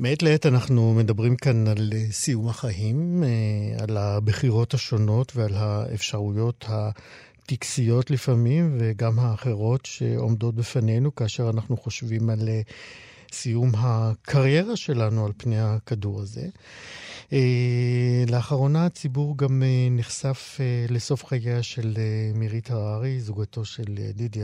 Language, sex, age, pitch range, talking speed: Hebrew, male, 50-69, 110-130 Hz, 105 wpm